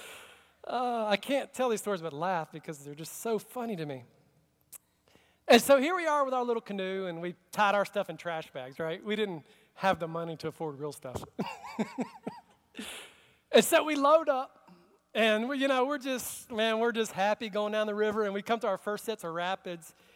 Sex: male